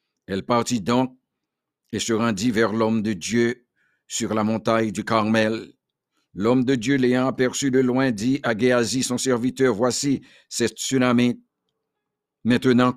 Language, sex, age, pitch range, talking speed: English, male, 50-69, 115-130 Hz, 145 wpm